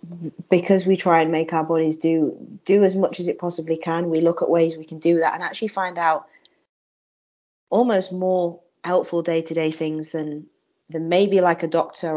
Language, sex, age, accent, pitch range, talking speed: English, female, 20-39, British, 155-180 Hz, 185 wpm